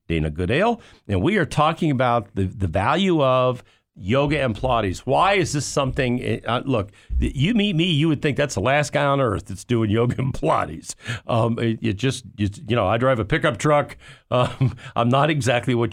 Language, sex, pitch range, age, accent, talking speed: English, male, 105-135 Hz, 50-69, American, 205 wpm